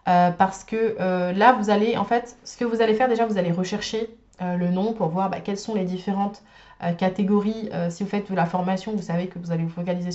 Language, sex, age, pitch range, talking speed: French, female, 20-39, 175-220 Hz, 260 wpm